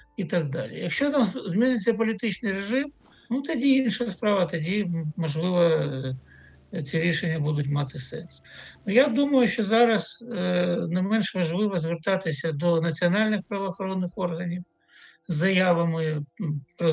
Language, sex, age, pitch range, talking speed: Ukrainian, male, 60-79, 160-215 Hz, 125 wpm